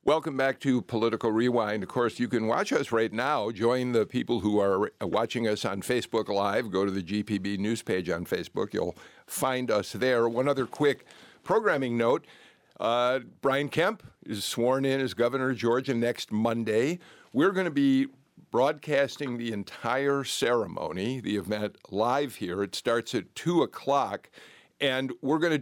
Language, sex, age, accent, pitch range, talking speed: English, male, 50-69, American, 105-135 Hz, 170 wpm